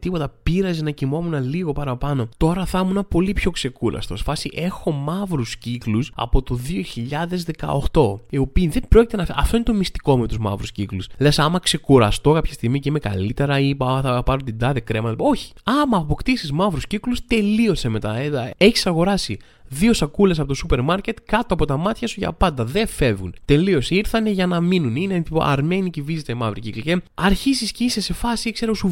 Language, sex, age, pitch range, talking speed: Greek, male, 20-39, 140-210 Hz, 175 wpm